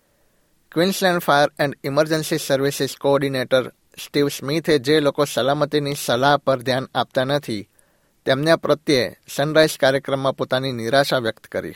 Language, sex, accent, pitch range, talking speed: Gujarati, male, native, 130-145 Hz, 120 wpm